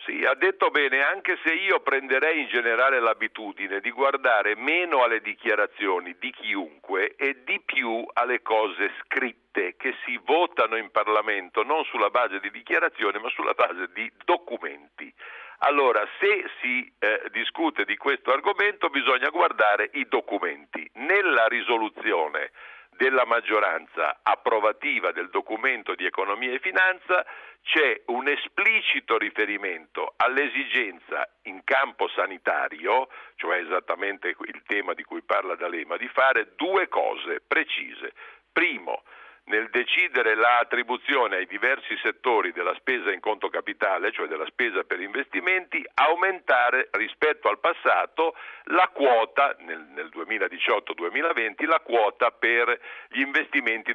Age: 50-69